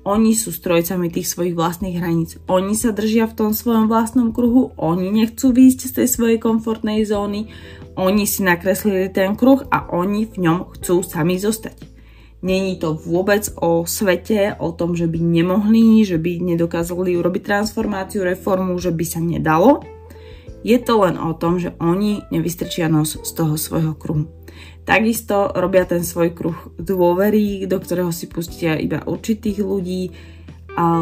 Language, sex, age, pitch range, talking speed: Slovak, female, 20-39, 160-195 Hz, 160 wpm